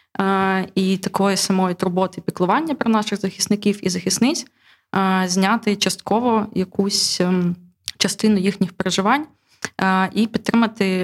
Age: 20-39